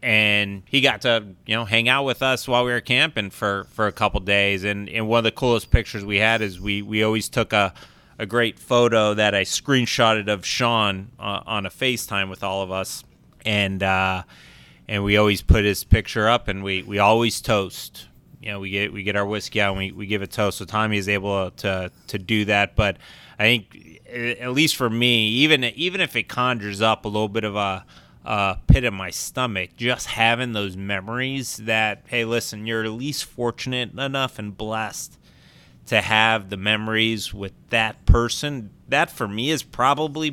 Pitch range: 100-115 Hz